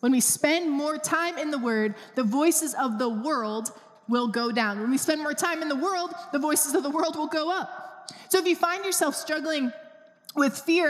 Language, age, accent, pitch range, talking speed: English, 20-39, American, 230-315 Hz, 220 wpm